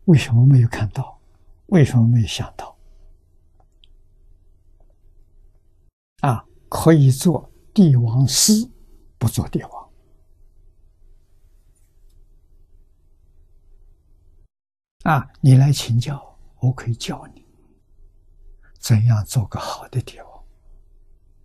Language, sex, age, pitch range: Chinese, male, 60-79, 80-120 Hz